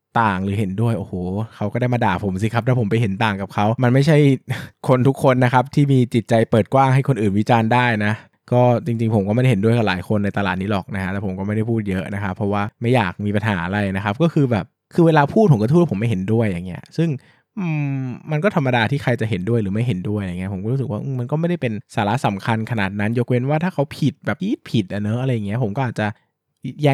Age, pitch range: 20-39, 105-135 Hz